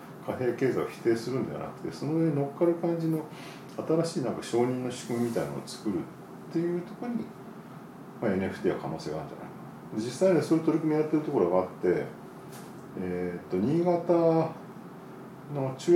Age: 40-59